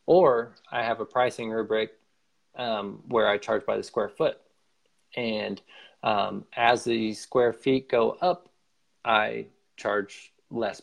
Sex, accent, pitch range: male, American, 100-125 Hz